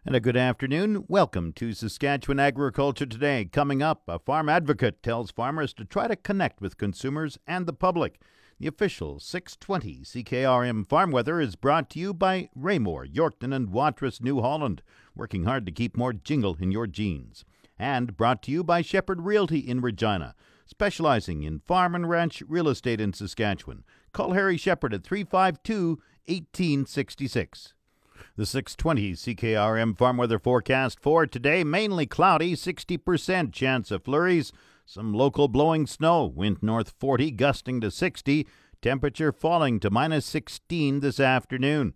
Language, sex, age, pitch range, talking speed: English, male, 50-69, 110-150 Hz, 150 wpm